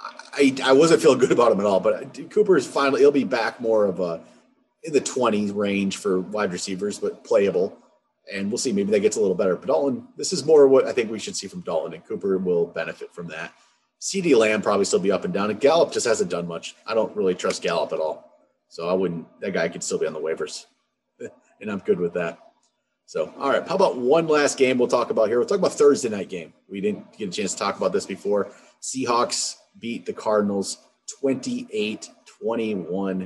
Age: 30-49